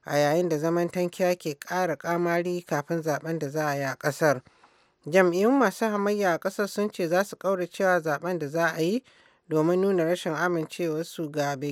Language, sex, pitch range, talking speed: English, male, 150-180 Hz, 180 wpm